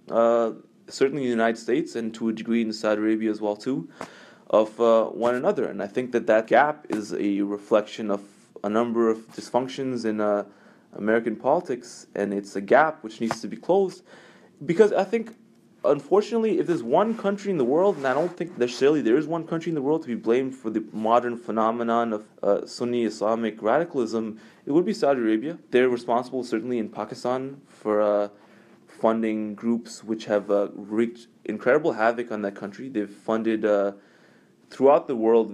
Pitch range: 110-135 Hz